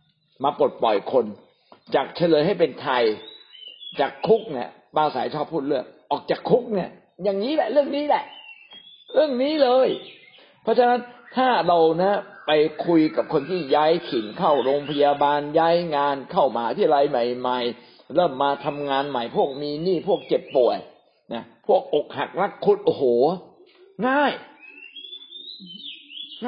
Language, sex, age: Thai, male, 60-79